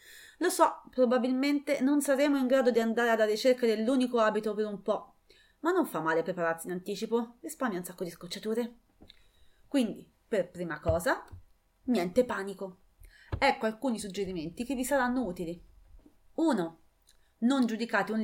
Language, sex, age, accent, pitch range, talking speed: English, female, 30-49, Italian, 190-255 Hz, 150 wpm